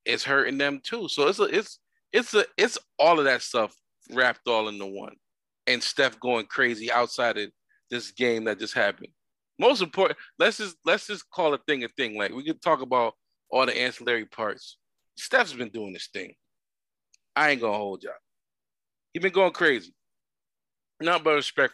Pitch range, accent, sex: 105-165 Hz, American, male